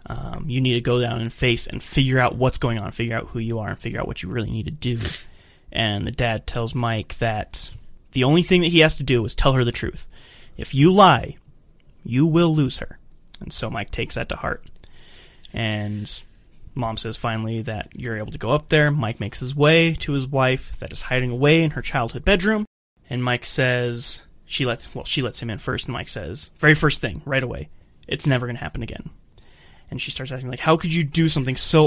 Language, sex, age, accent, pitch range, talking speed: English, male, 20-39, American, 120-150 Hz, 230 wpm